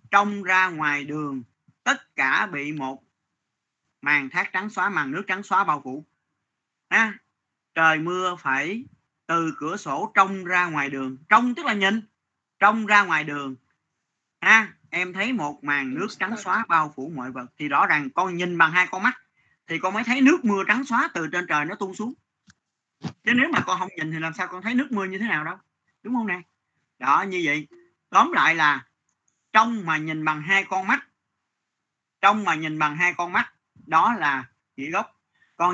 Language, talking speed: Vietnamese, 195 wpm